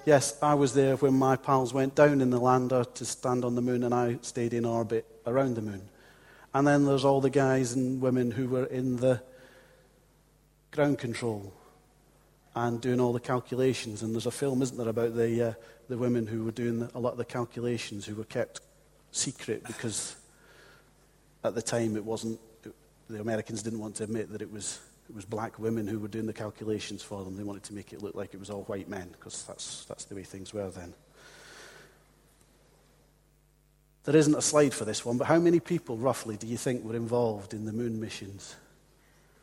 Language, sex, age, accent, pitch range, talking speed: English, male, 40-59, British, 110-135 Hz, 205 wpm